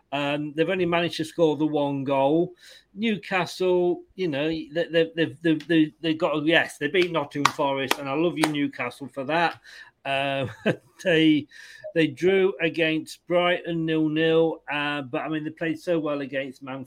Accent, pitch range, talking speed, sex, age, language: British, 140-170 Hz, 180 wpm, male, 40-59, English